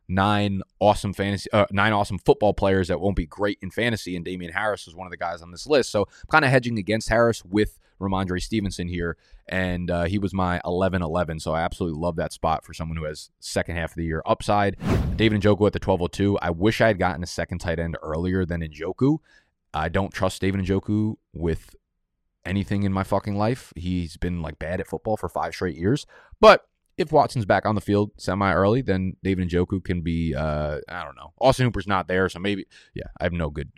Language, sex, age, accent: English, male, 20-39, American